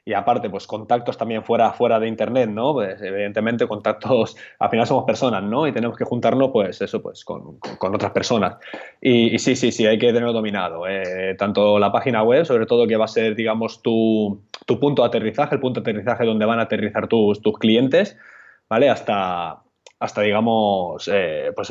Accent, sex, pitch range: Spanish, male, 105-130 Hz